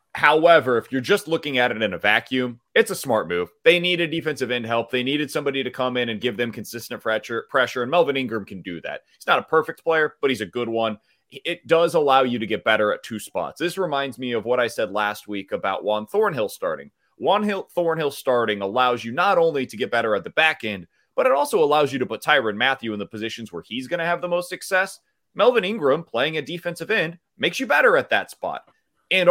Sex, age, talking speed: male, 30-49, 240 wpm